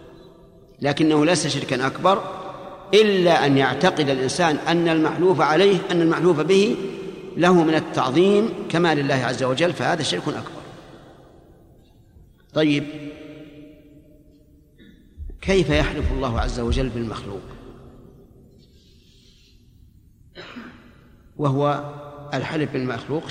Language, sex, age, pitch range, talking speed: Arabic, male, 50-69, 135-180 Hz, 90 wpm